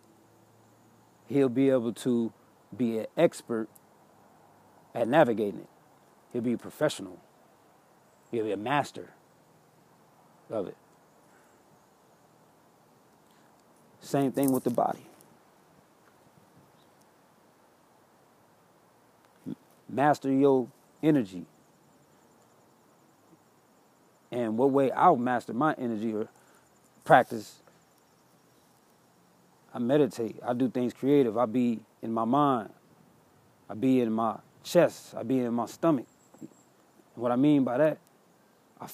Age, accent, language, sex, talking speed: 40-59, American, English, male, 100 wpm